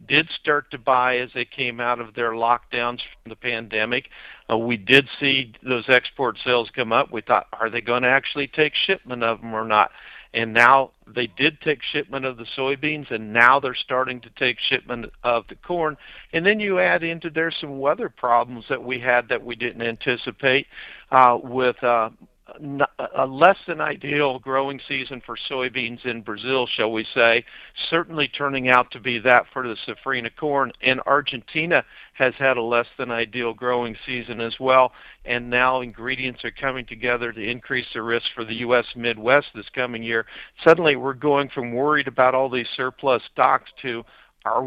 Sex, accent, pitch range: male, American, 120-135 Hz